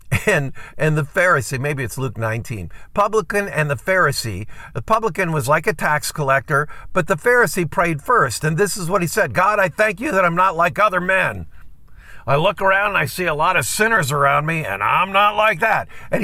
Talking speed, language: 210 wpm, English